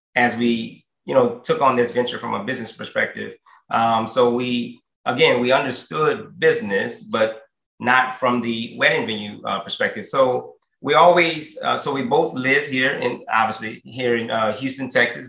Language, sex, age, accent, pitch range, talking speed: English, male, 30-49, American, 115-135 Hz, 170 wpm